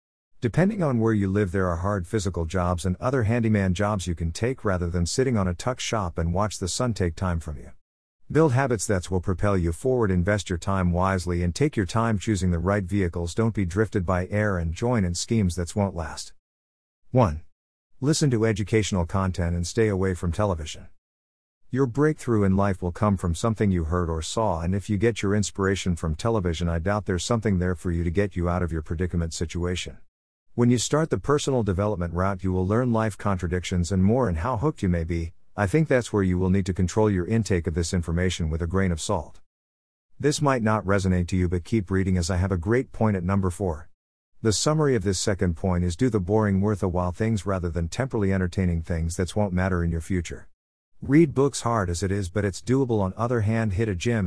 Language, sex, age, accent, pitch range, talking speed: English, male, 50-69, American, 85-110 Hz, 225 wpm